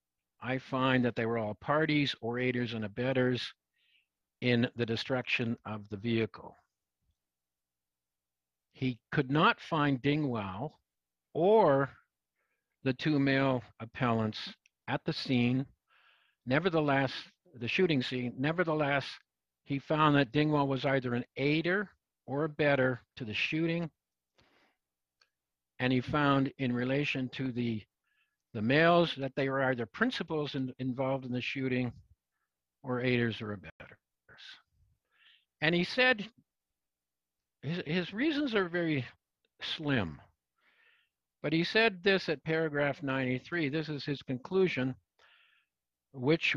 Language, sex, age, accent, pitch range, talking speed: English, male, 50-69, American, 115-150 Hz, 120 wpm